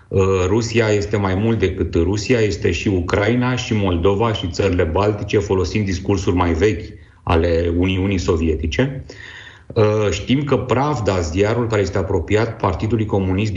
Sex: male